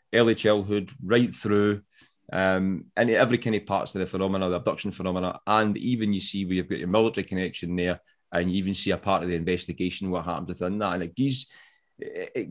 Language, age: English, 30-49